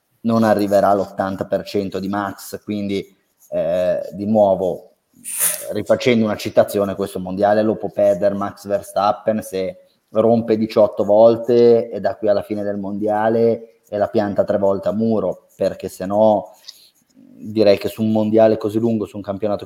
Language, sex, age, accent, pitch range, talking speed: Italian, male, 30-49, native, 100-110 Hz, 155 wpm